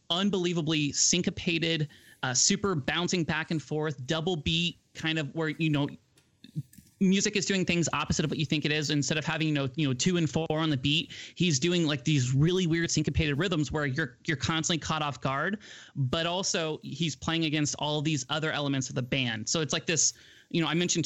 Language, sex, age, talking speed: English, male, 30-49, 210 wpm